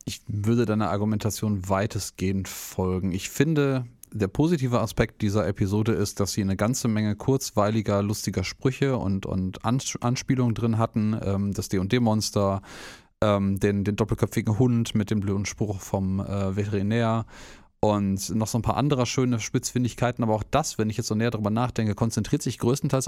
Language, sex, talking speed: German, male, 160 wpm